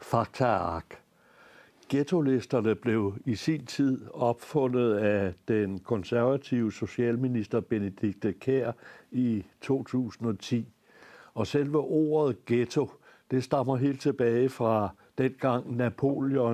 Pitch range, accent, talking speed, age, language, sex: 115-135 Hz, native, 100 wpm, 60-79, Danish, male